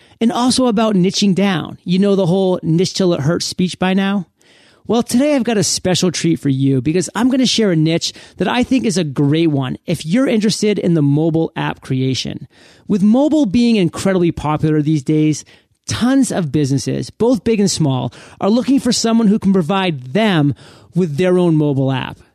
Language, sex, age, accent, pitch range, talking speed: English, male, 30-49, American, 150-220 Hz, 200 wpm